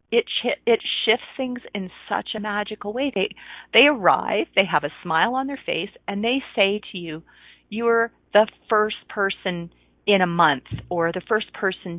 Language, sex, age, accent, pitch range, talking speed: English, female, 40-59, American, 155-225 Hz, 175 wpm